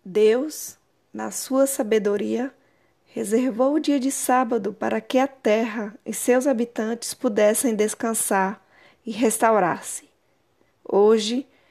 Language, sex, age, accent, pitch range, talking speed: Portuguese, female, 20-39, Brazilian, 210-245 Hz, 110 wpm